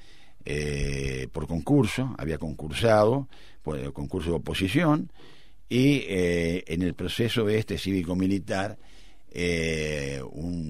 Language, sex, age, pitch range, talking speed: Spanish, male, 50-69, 75-110 Hz, 110 wpm